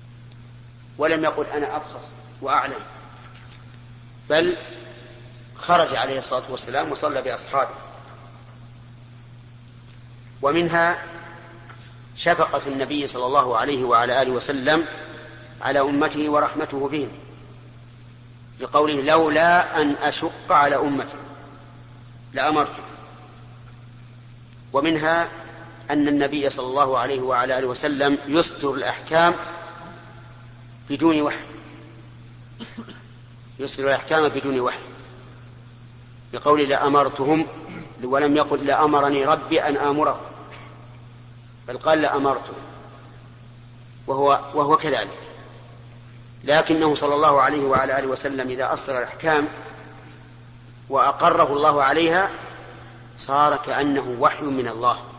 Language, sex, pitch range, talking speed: Arabic, male, 120-145 Hz, 90 wpm